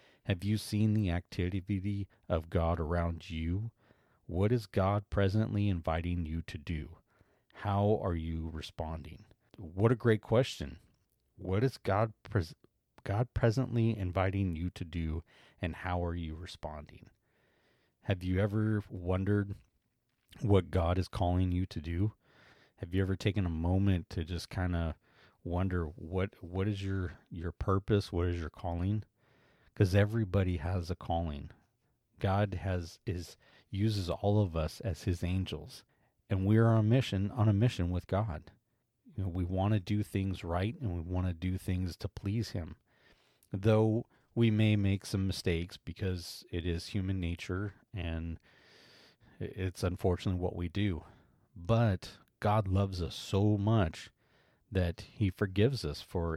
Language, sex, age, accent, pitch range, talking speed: English, male, 30-49, American, 90-105 Hz, 150 wpm